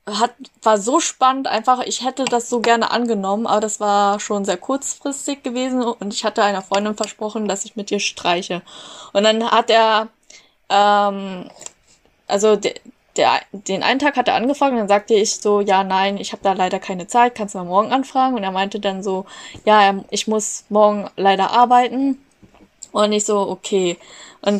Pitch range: 195-235 Hz